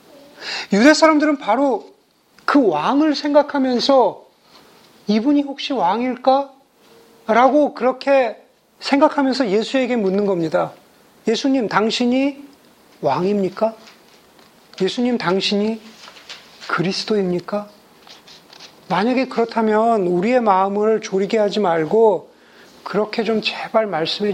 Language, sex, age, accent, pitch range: Korean, male, 40-59, native, 190-245 Hz